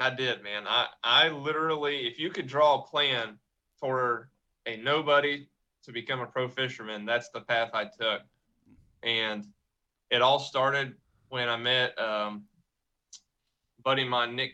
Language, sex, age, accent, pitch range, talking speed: English, male, 20-39, American, 120-145 Hz, 155 wpm